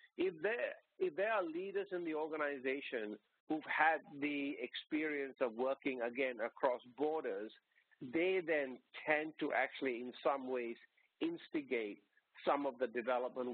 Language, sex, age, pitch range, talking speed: English, male, 50-69, 130-170 Hz, 135 wpm